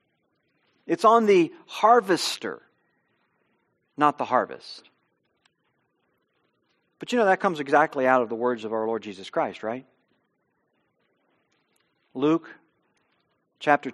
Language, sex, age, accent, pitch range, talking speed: English, male, 40-59, American, 140-225 Hz, 110 wpm